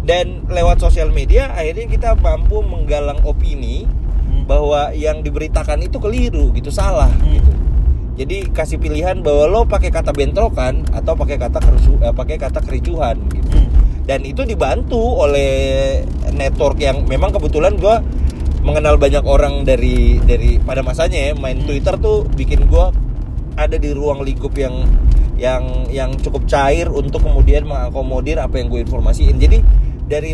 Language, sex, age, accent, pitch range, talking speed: Indonesian, male, 20-39, native, 65-75 Hz, 145 wpm